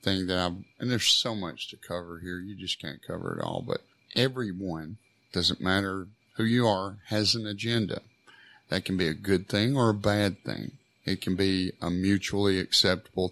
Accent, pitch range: American, 90-105 Hz